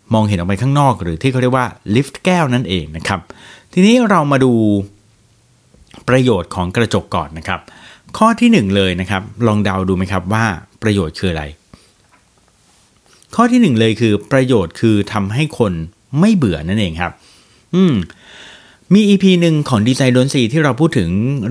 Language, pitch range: Thai, 100-140 Hz